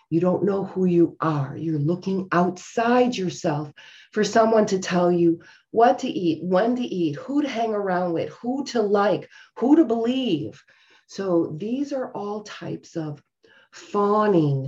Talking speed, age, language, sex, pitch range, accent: 160 wpm, 40-59, English, female, 155-210 Hz, American